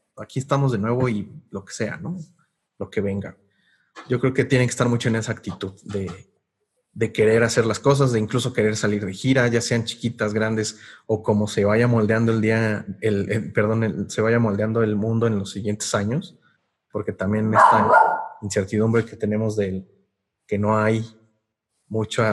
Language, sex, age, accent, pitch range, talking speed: Spanish, male, 30-49, Mexican, 105-130 Hz, 185 wpm